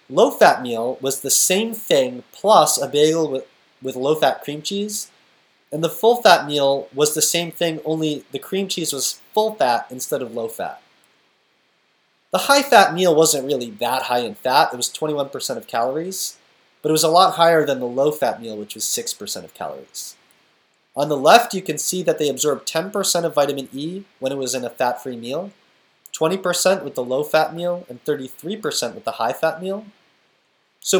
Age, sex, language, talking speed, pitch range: 30-49, male, English, 180 wpm, 135-185 Hz